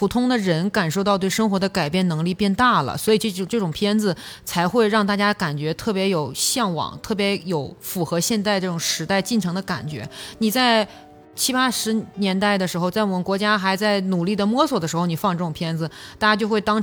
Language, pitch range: Chinese, 185-230 Hz